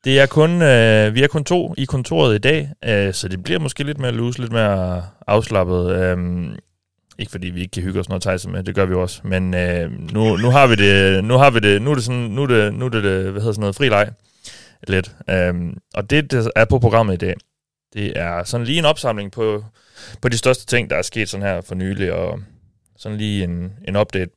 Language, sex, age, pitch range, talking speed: Danish, male, 30-49, 95-120 Hz, 220 wpm